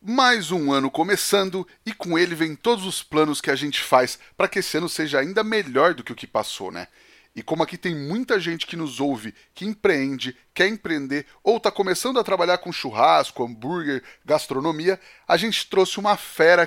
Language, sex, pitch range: Portuguese, male, 165-220 Hz